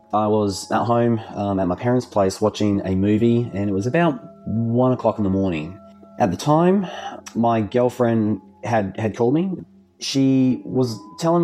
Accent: Australian